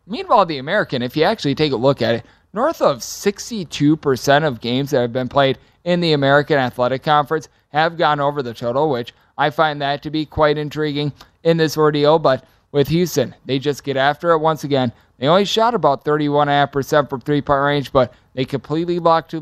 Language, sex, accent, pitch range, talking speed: English, male, American, 140-160 Hz, 195 wpm